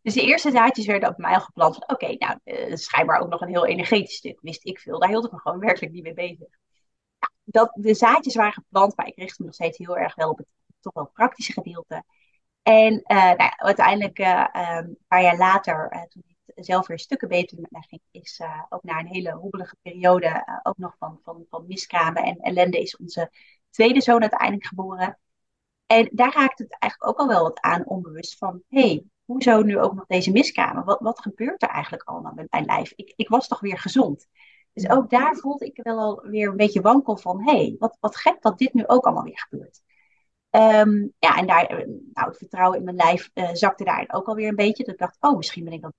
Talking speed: 235 wpm